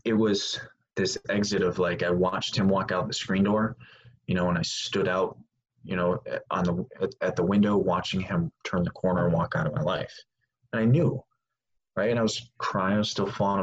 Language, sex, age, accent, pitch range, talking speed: English, male, 20-39, American, 95-120 Hz, 220 wpm